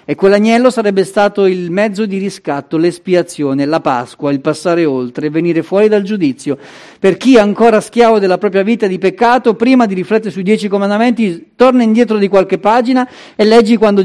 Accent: native